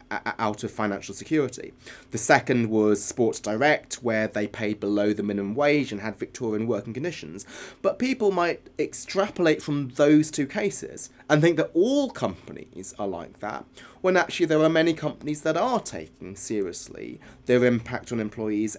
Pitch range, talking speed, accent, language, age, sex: 115-155 Hz, 165 wpm, British, English, 30-49, male